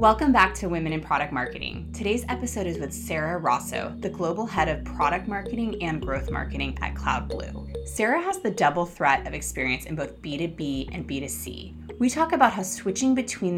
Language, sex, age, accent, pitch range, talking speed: English, female, 20-39, American, 140-215 Hz, 185 wpm